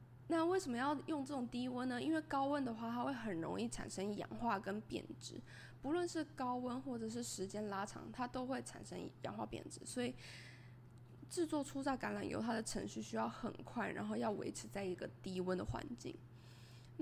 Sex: female